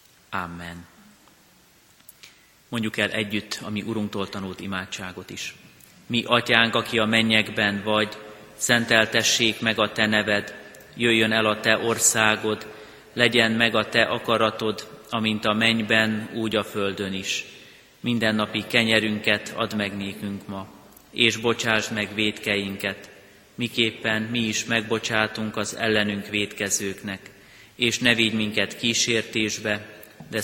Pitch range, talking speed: 100-115 Hz, 120 wpm